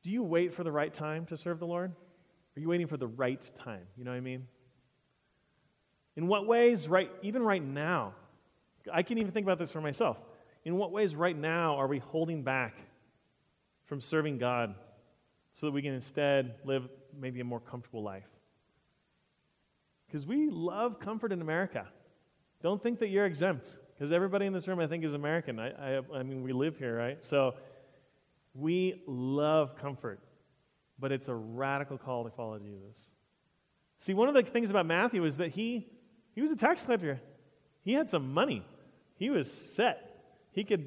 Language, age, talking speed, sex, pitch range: English, 30-49, 185 wpm, male, 130-185 Hz